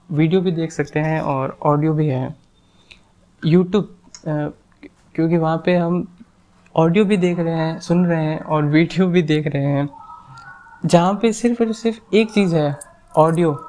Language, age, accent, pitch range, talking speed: Hindi, 20-39, native, 150-185 Hz, 160 wpm